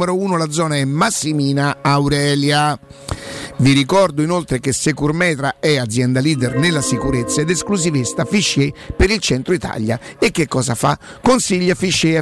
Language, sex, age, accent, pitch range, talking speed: Italian, male, 50-69, native, 135-170 Hz, 140 wpm